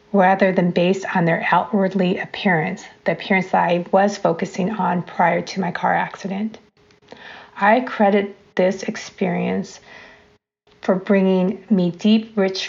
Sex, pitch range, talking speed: female, 180-210 Hz, 130 wpm